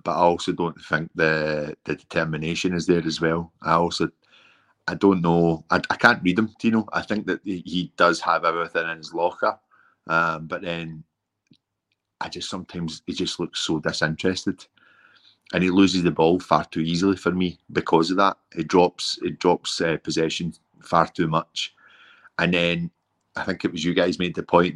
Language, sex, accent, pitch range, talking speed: English, male, British, 80-90 Hz, 190 wpm